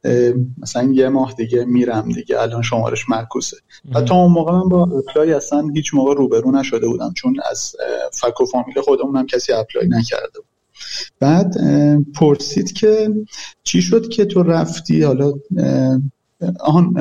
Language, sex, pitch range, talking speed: Persian, male, 135-180 Hz, 140 wpm